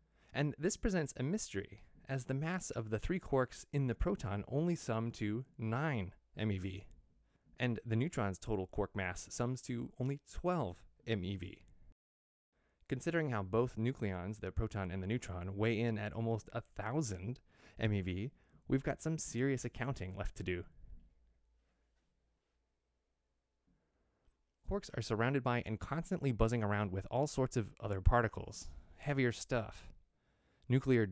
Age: 20-39